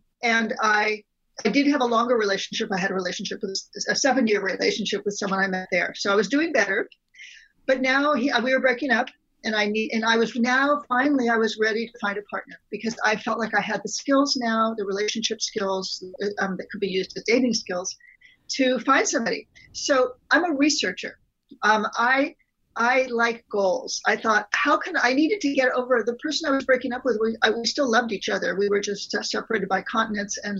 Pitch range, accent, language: 205-260 Hz, American, English